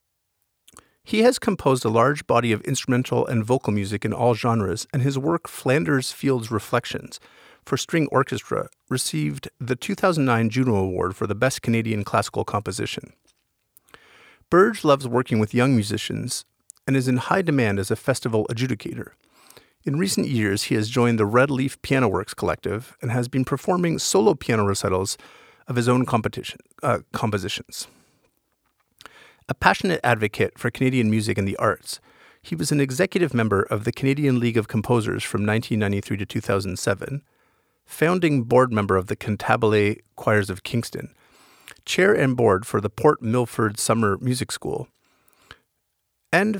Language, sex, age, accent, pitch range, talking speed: English, male, 50-69, American, 110-140 Hz, 150 wpm